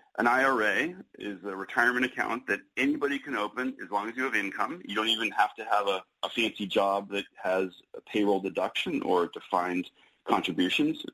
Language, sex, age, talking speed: English, male, 40-59, 185 wpm